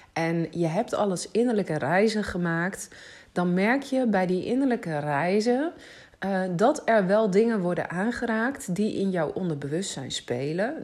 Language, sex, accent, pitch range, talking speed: Dutch, female, Dutch, 160-215 Hz, 145 wpm